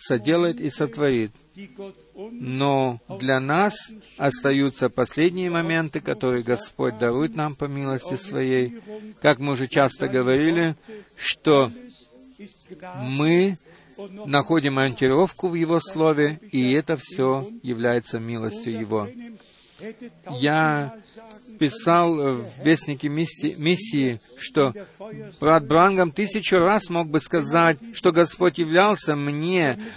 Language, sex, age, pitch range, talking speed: Russian, male, 50-69, 145-200 Hz, 105 wpm